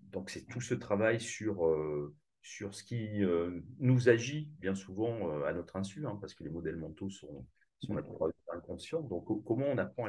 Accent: French